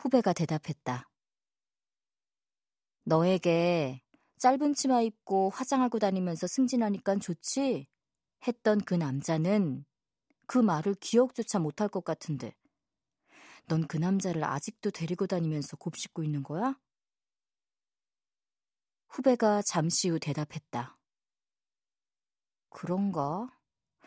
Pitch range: 160-230 Hz